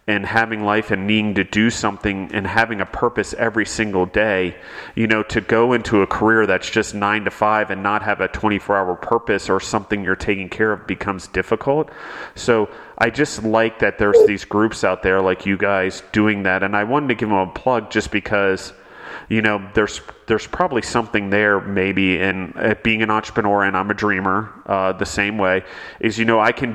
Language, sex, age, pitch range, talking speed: English, male, 30-49, 95-110 Hz, 205 wpm